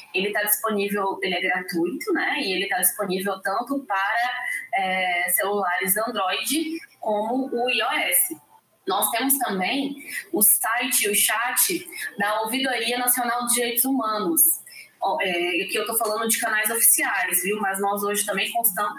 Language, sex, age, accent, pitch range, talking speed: Portuguese, female, 20-39, Brazilian, 205-270 Hz, 145 wpm